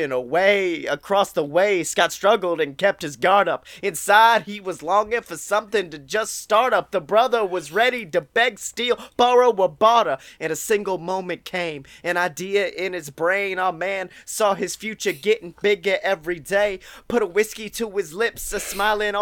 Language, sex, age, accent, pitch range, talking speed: English, male, 20-39, American, 190-240 Hz, 180 wpm